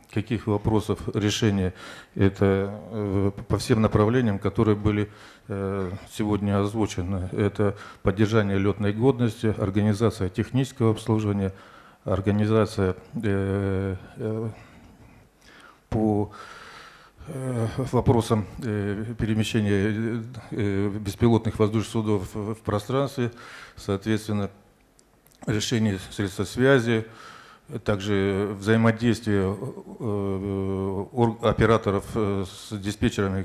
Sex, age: male, 40-59